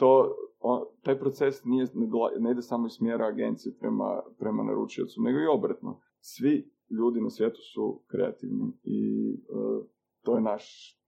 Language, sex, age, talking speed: Croatian, male, 20-39, 150 wpm